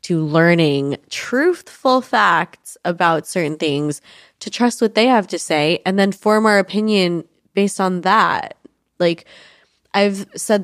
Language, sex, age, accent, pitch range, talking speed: English, female, 20-39, American, 160-200 Hz, 140 wpm